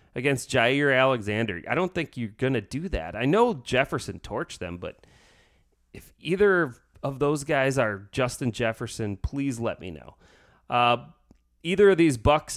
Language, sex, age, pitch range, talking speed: English, male, 30-49, 100-140 Hz, 160 wpm